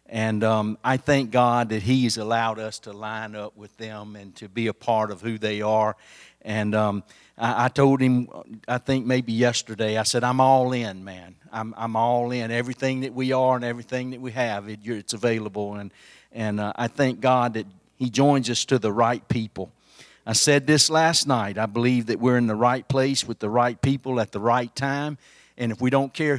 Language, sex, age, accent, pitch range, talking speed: English, male, 50-69, American, 110-145 Hz, 215 wpm